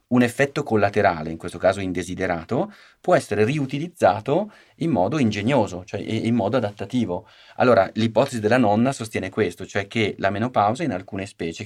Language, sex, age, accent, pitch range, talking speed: Italian, male, 30-49, native, 95-115 Hz, 155 wpm